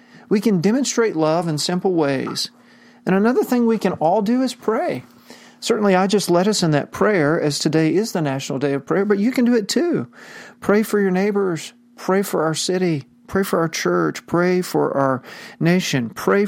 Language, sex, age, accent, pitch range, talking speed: English, male, 40-59, American, 150-215 Hz, 200 wpm